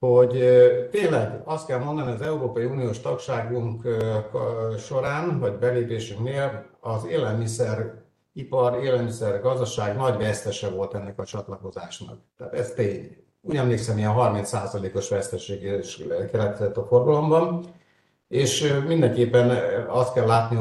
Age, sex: 60-79, male